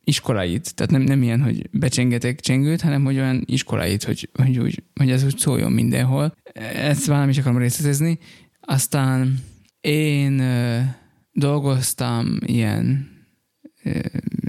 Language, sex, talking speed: Hungarian, male, 125 wpm